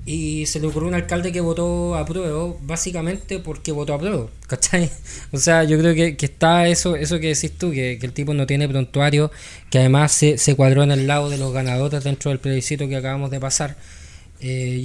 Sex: male